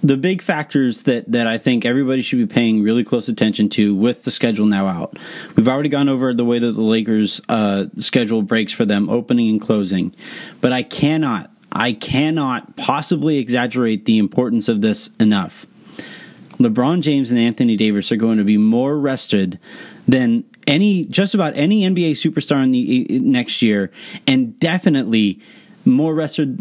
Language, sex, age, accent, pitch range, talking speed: English, male, 30-49, American, 115-190 Hz, 170 wpm